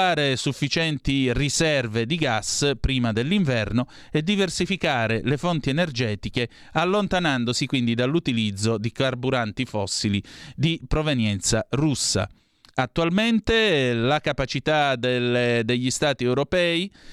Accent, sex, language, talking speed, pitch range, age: native, male, Italian, 90 wpm, 115-155 Hz, 30-49